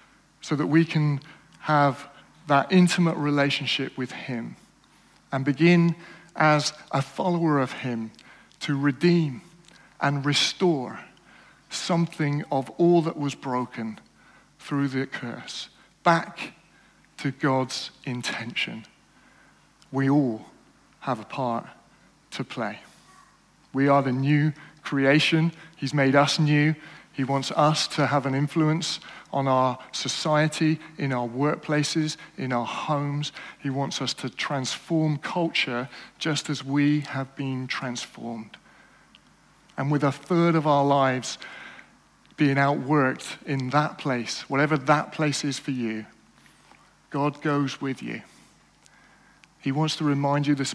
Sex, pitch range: male, 135-155 Hz